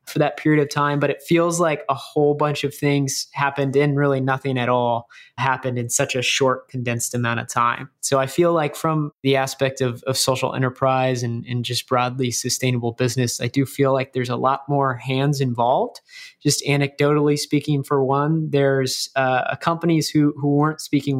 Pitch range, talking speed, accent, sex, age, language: 130-145 Hz, 195 wpm, American, male, 20-39, English